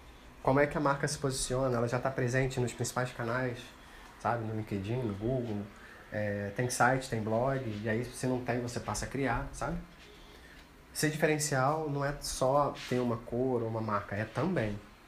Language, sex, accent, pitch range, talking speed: Portuguese, male, Brazilian, 105-130 Hz, 185 wpm